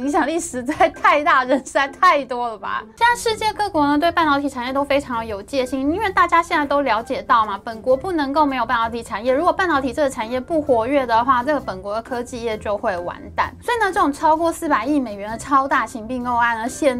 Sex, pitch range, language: female, 230-315 Hz, Chinese